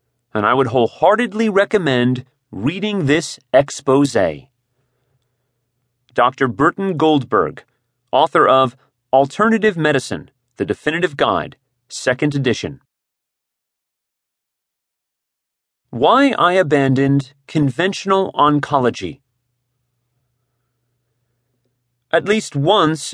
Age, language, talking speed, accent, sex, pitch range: 40-59, English, 75 wpm, American, male, 125-165 Hz